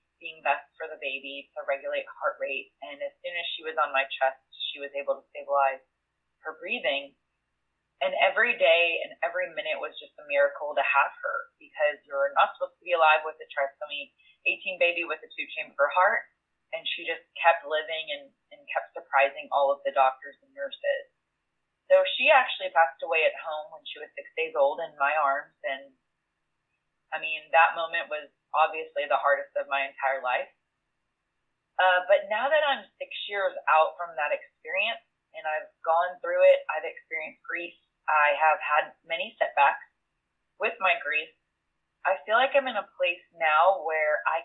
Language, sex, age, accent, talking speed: English, female, 20-39, American, 185 wpm